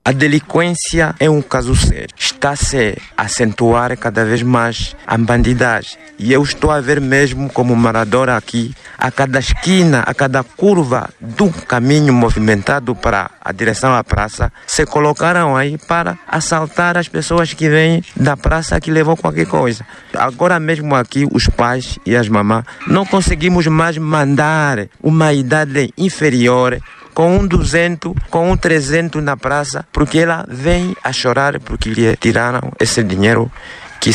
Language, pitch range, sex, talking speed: Portuguese, 120-150 Hz, male, 155 wpm